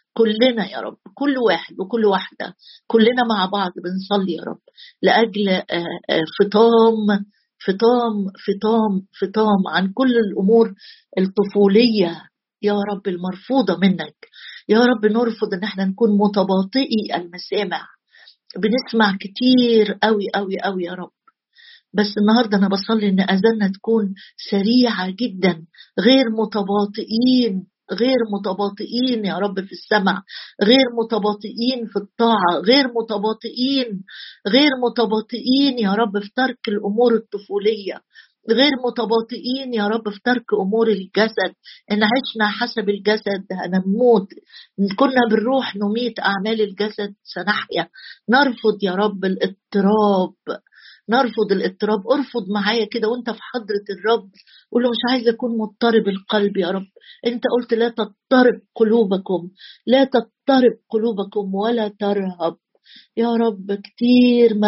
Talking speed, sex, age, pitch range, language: 120 wpm, female, 50-69, 200-240 Hz, Arabic